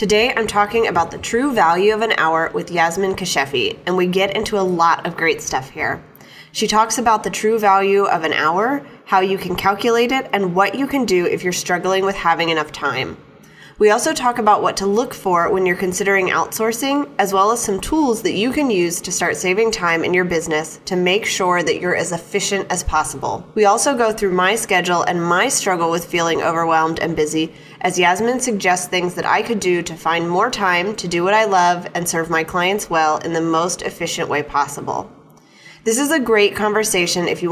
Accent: American